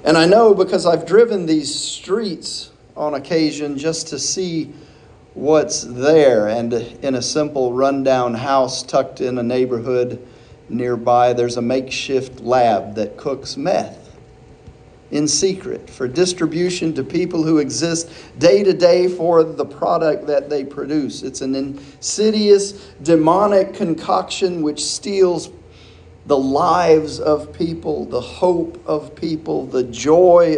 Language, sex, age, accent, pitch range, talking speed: English, male, 40-59, American, 135-180 Hz, 130 wpm